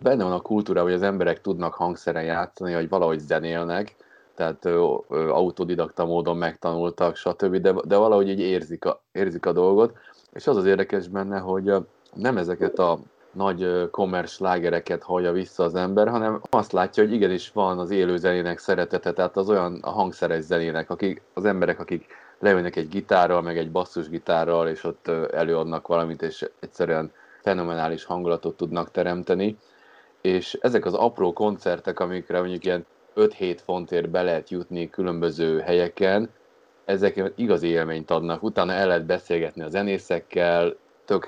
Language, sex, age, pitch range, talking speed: Hungarian, male, 30-49, 85-95 Hz, 150 wpm